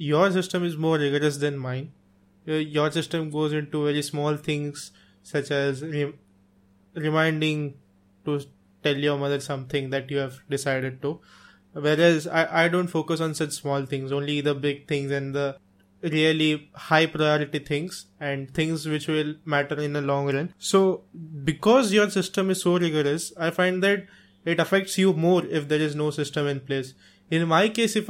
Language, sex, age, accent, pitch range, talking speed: English, male, 20-39, Indian, 145-165 Hz, 170 wpm